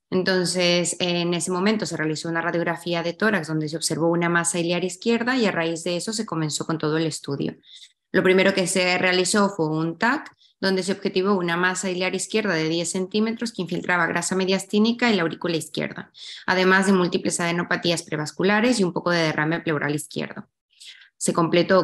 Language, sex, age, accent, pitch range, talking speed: German, female, 20-39, Mexican, 165-195 Hz, 185 wpm